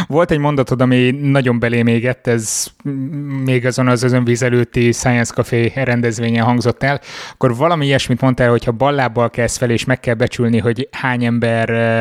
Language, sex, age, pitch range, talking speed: Hungarian, male, 20-39, 120-135 Hz, 170 wpm